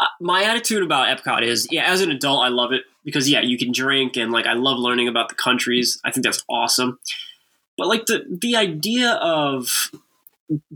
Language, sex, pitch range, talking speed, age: English, male, 120-150 Hz, 195 wpm, 20-39